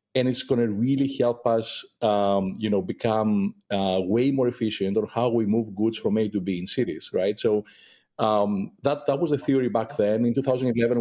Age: 50-69